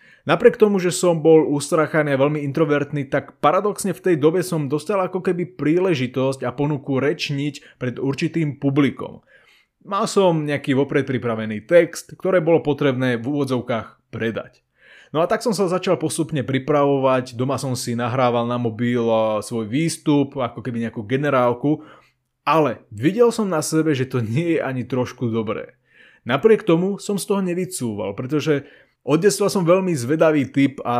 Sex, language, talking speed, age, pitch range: male, Slovak, 160 wpm, 20-39, 125-170 Hz